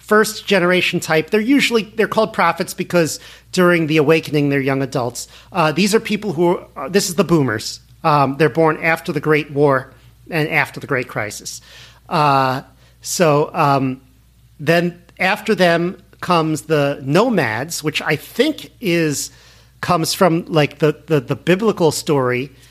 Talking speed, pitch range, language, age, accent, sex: 155 wpm, 140-180 Hz, English, 40-59, American, male